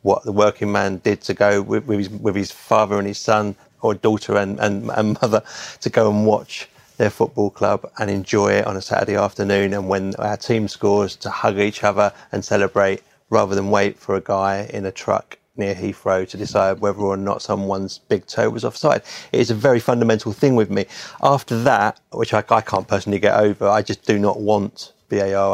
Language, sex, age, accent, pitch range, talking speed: English, male, 30-49, British, 100-110 Hz, 210 wpm